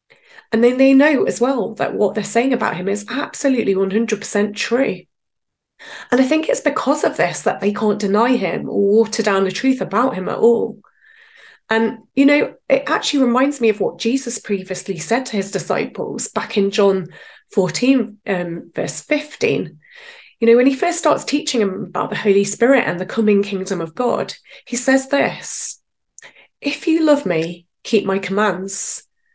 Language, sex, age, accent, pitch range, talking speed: English, female, 30-49, British, 195-265 Hz, 180 wpm